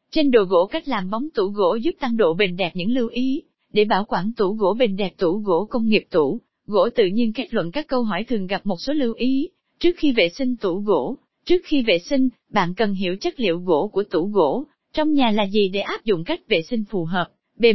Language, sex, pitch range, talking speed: Vietnamese, female, 200-275 Hz, 250 wpm